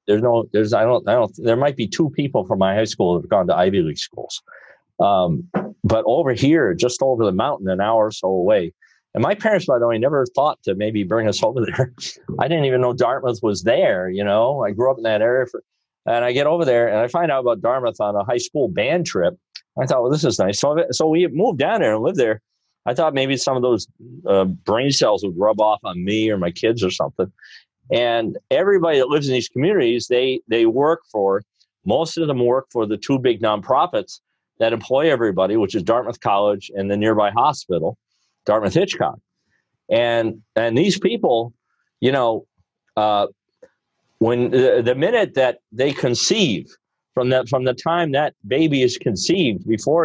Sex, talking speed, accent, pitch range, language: male, 205 wpm, American, 105-140 Hz, English